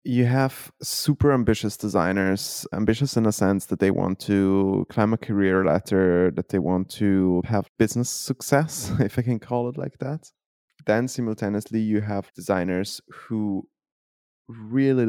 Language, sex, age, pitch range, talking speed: English, male, 20-39, 95-115 Hz, 150 wpm